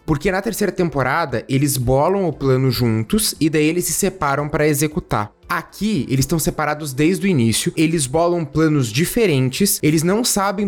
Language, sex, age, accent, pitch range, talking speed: Portuguese, male, 20-39, Brazilian, 145-185 Hz, 170 wpm